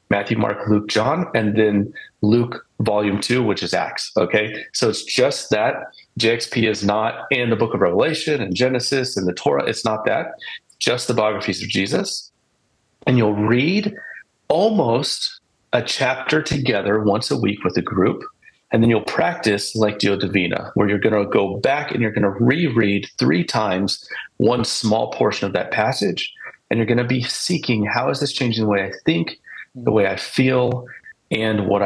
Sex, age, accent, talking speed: male, 40-59, American, 185 wpm